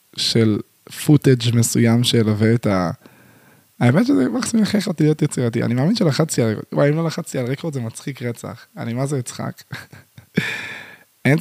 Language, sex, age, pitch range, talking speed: Hebrew, male, 20-39, 120-165 Hz, 160 wpm